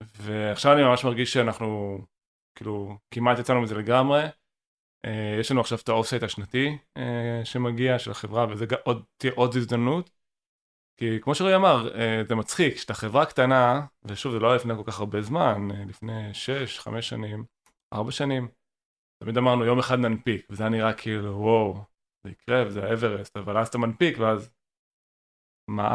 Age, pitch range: 20-39, 110-130 Hz